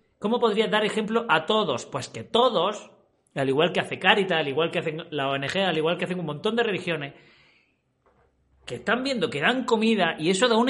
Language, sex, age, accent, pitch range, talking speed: Spanish, male, 40-59, Spanish, 155-215 Hz, 215 wpm